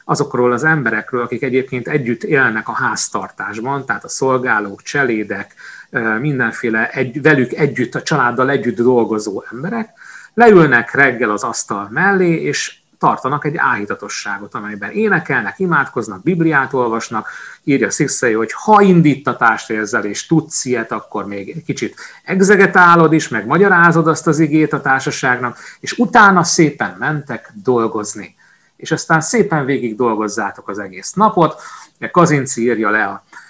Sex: male